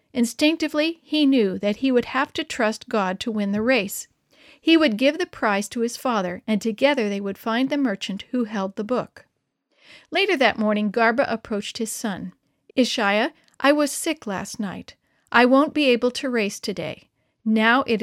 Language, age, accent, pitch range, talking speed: English, 50-69, American, 205-270 Hz, 185 wpm